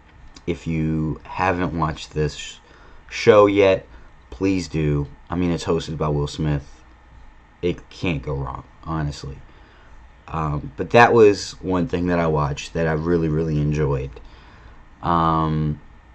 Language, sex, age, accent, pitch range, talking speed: English, male, 30-49, American, 75-85 Hz, 135 wpm